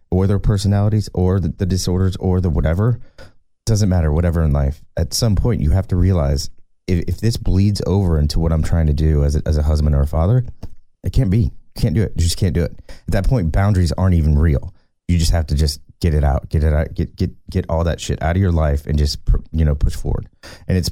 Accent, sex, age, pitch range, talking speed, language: American, male, 30-49, 75-95 Hz, 250 wpm, English